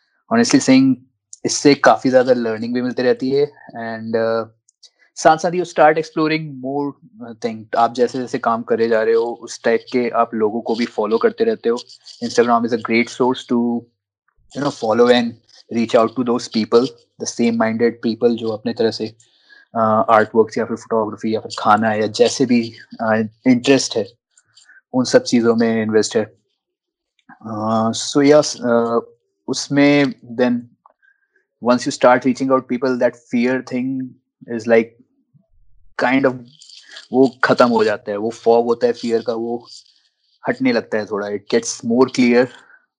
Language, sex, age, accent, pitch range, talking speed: Hindi, male, 20-39, native, 115-140 Hz, 170 wpm